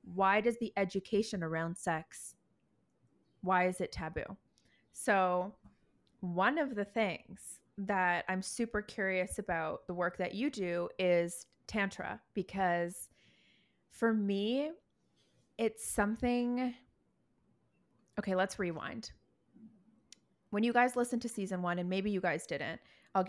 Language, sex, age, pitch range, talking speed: English, female, 20-39, 170-220 Hz, 125 wpm